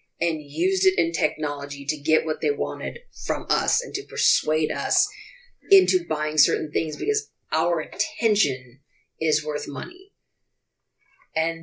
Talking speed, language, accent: 140 wpm, English, American